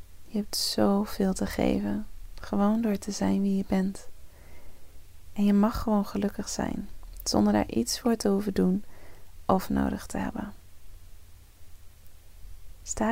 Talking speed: 135 wpm